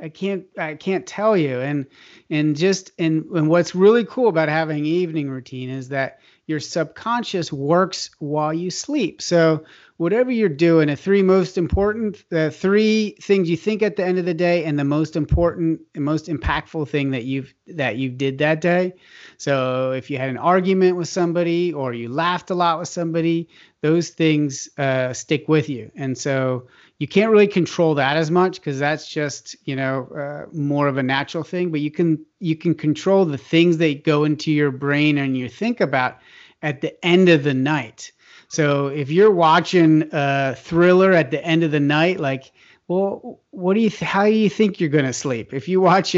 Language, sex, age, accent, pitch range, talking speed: English, male, 30-49, American, 145-180 Hz, 200 wpm